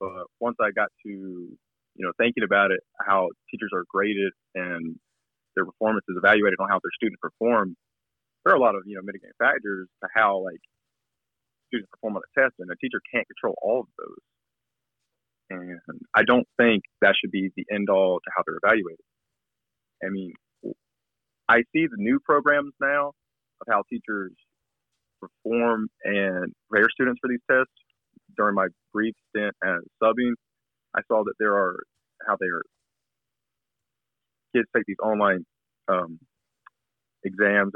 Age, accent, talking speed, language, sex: 30-49, American, 160 wpm, English, male